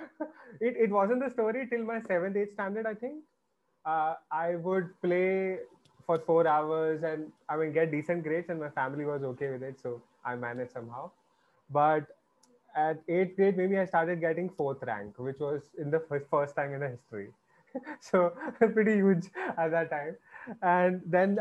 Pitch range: 145-180 Hz